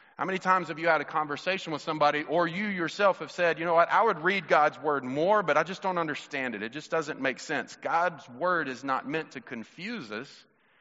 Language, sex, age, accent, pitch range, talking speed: English, male, 40-59, American, 130-165 Hz, 240 wpm